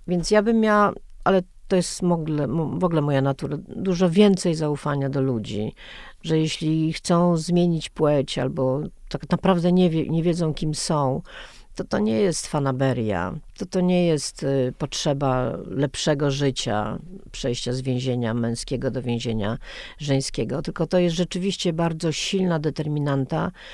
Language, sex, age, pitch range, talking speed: Polish, female, 50-69, 140-175 Hz, 135 wpm